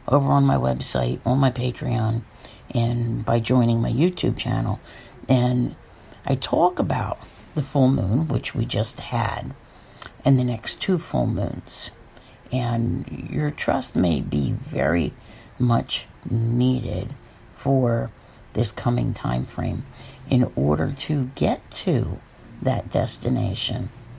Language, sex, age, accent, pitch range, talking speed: English, female, 60-79, American, 100-130 Hz, 125 wpm